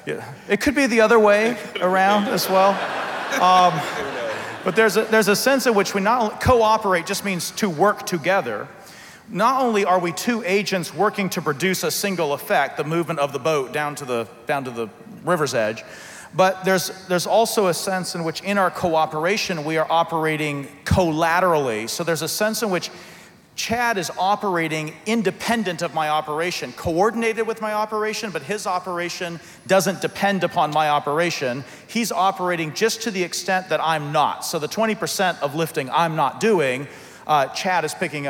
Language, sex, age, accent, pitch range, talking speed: English, male, 40-59, American, 155-205 Hz, 180 wpm